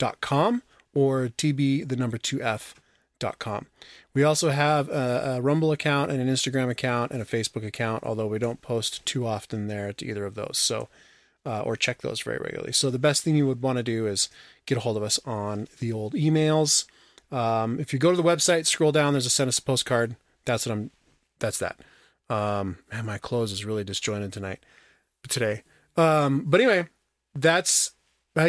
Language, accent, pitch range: English, American, 115-150 Hz